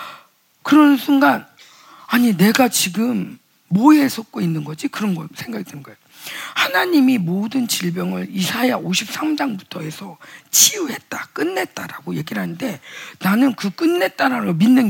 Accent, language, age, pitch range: native, Korean, 40-59, 190-285 Hz